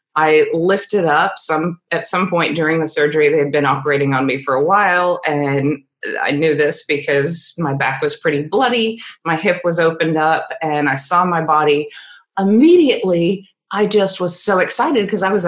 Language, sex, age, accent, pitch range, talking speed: English, female, 30-49, American, 150-190 Hz, 185 wpm